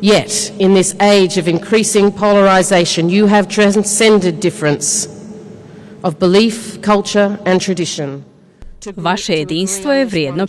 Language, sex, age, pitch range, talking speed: Croatian, female, 40-59, 160-235 Hz, 115 wpm